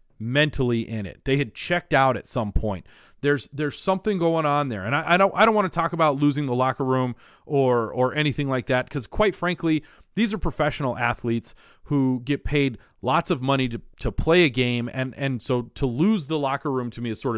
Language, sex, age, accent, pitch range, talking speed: English, male, 40-59, American, 120-160 Hz, 225 wpm